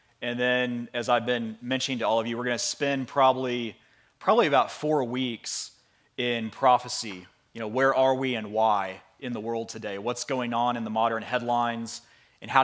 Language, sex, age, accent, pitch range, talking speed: English, male, 30-49, American, 110-130 Hz, 195 wpm